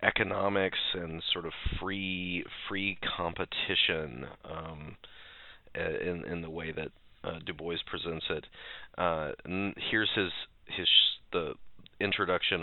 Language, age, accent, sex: English, 30-49, American, male